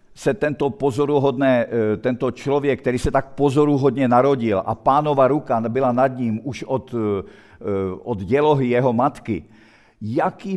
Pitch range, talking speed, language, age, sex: 115-150 Hz, 125 wpm, Czech, 50-69, male